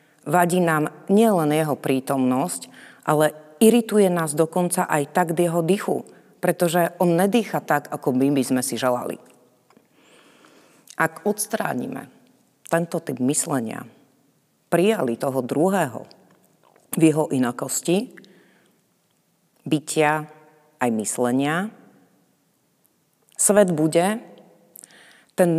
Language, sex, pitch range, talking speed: Slovak, female, 145-180 Hz, 95 wpm